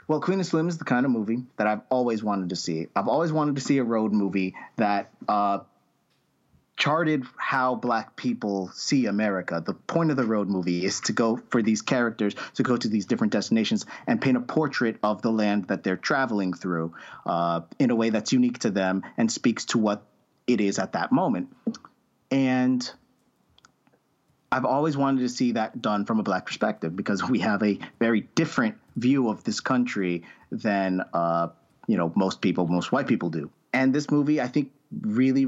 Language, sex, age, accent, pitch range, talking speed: English, male, 30-49, American, 100-135 Hz, 195 wpm